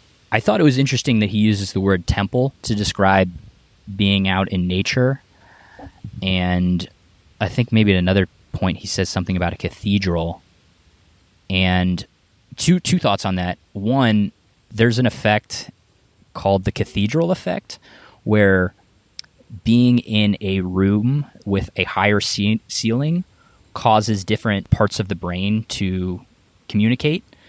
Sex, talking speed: male, 135 wpm